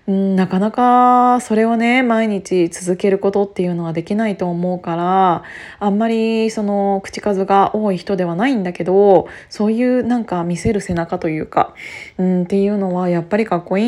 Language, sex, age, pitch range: Japanese, female, 20-39, 180-235 Hz